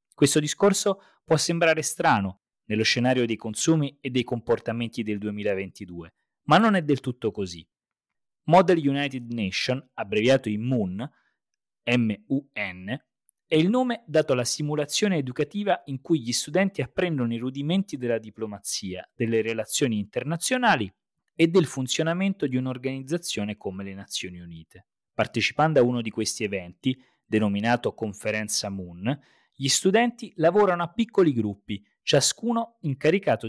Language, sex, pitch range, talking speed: Italian, male, 110-160 Hz, 125 wpm